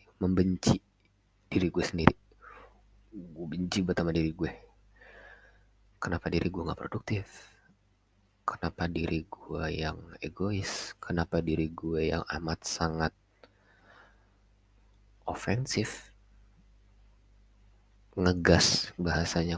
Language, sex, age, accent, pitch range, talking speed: Indonesian, male, 30-49, native, 85-100 Hz, 85 wpm